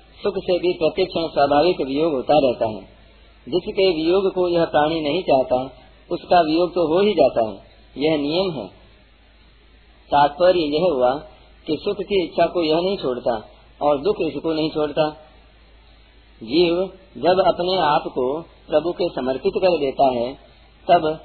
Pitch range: 145-180 Hz